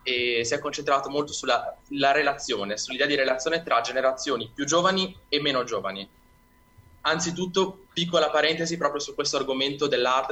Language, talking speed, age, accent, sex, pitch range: Italian, 150 wpm, 20-39, native, male, 120-150 Hz